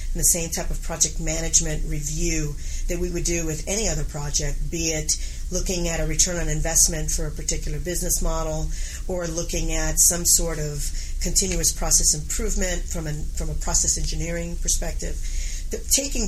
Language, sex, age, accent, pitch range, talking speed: English, female, 40-59, American, 155-180 Hz, 165 wpm